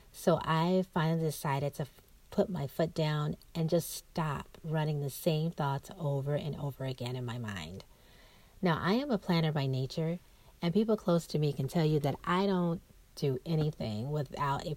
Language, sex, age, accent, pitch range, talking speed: English, female, 40-59, American, 140-180 Hz, 185 wpm